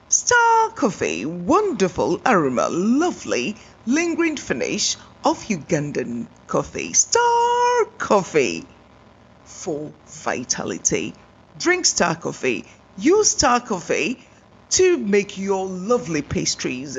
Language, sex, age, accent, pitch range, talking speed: English, female, 30-49, British, 200-335 Hz, 90 wpm